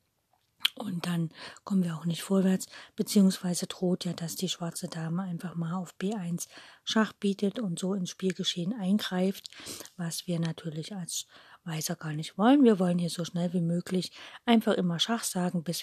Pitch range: 170-205 Hz